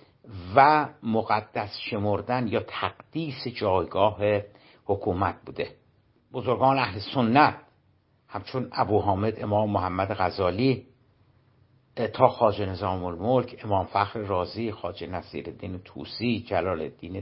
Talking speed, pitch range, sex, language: 100 wpm, 105-130 Hz, male, Persian